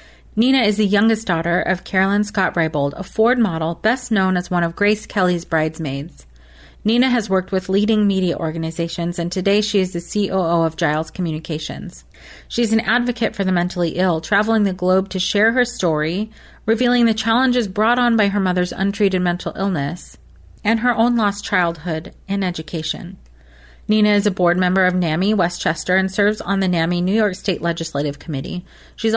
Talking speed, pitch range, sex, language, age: 175 wpm, 170-220 Hz, female, English, 30-49